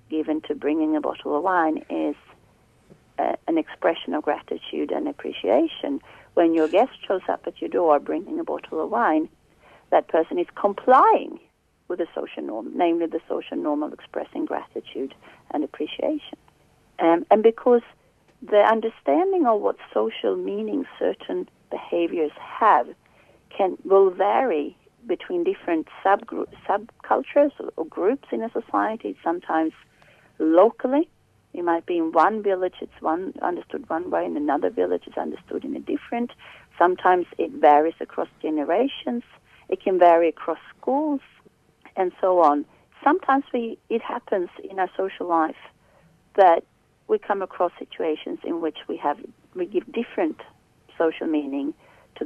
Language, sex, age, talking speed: English, female, 40-59, 145 wpm